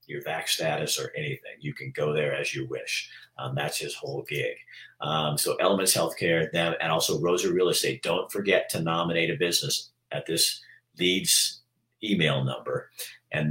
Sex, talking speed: male, 175 wpm